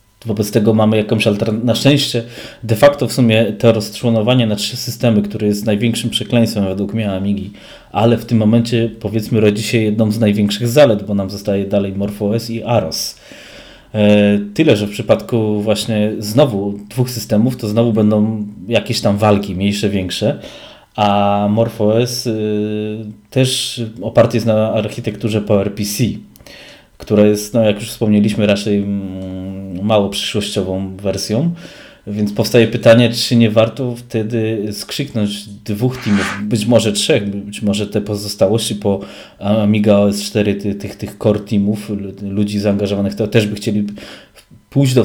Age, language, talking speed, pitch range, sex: 20-39, Polish, 145 wpm, 100-115 Hz, male